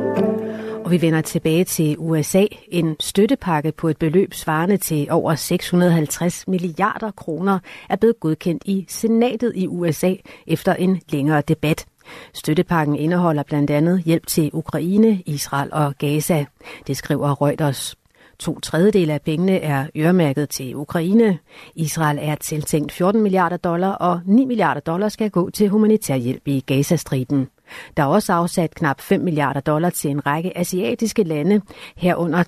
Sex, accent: female, native